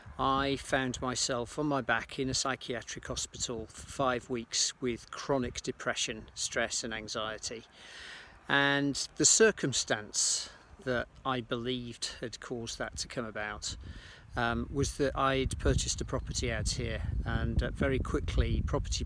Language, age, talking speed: English, 40-59, 140 wpm